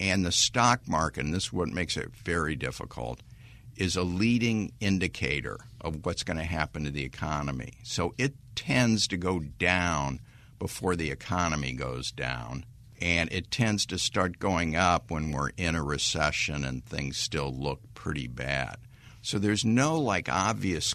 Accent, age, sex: American, 60-79, male